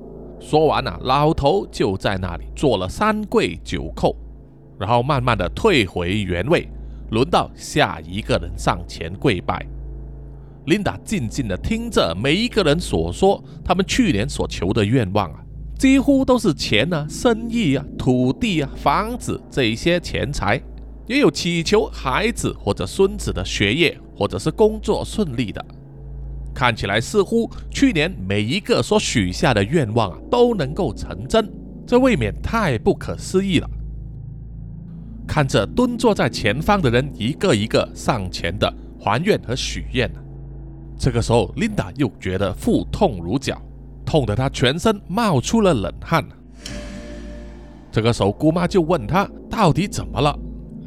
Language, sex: Chinese, male